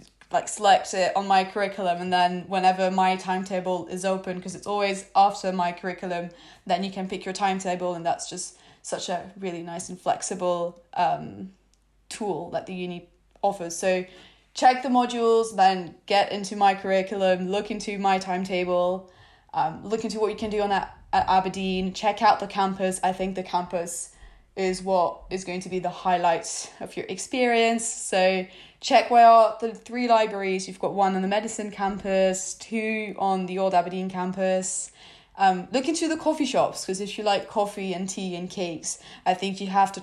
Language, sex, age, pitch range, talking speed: English, female, 20-39, 180-205 Hz, 185 wpm